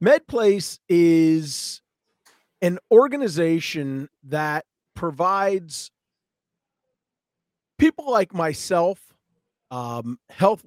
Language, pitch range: English, 145-170 Hz